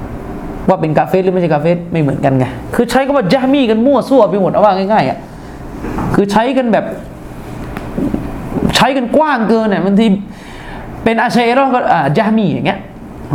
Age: 20-39